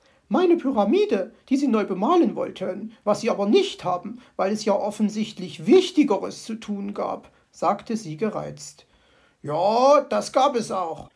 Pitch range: 195-260 Hz